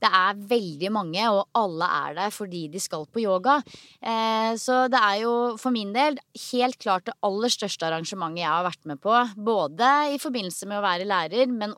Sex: female